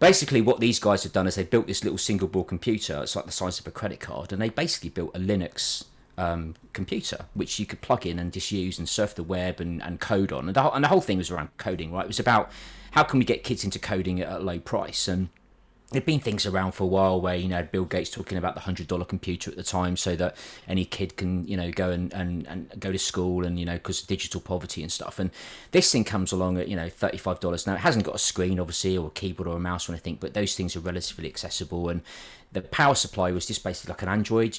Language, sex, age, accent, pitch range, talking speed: English, male, 30-49, British, 90-105 Hz, 265 wpm